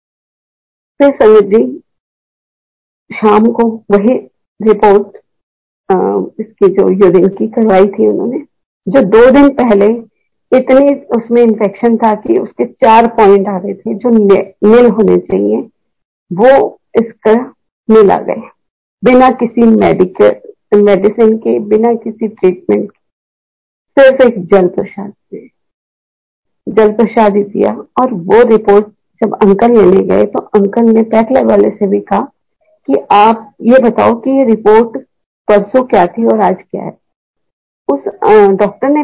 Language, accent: Hindi, native